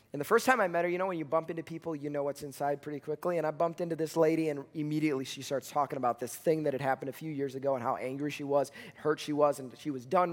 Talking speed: 315 wpm